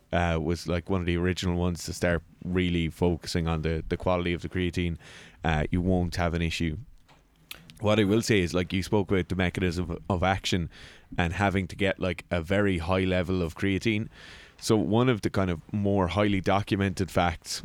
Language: English